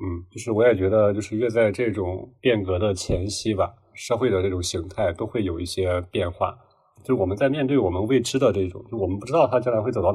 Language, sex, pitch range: Chinese, male, 95-120 Hz